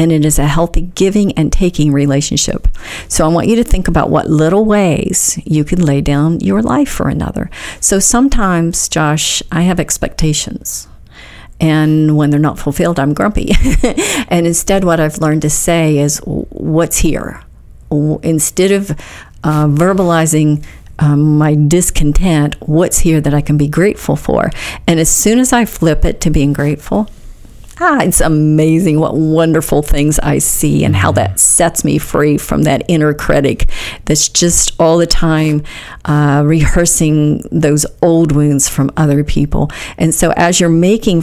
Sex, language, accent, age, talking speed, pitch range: female, English, American, 50-69, 160 wpm, 150-175 Hz